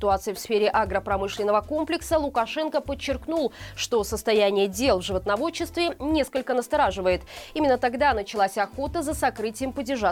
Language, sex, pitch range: Russian, female, 200-285 Hz